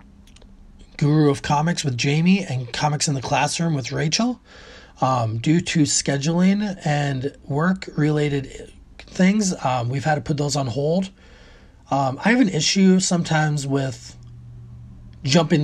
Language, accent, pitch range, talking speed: English, American, 105-155 Hz, 140 wpm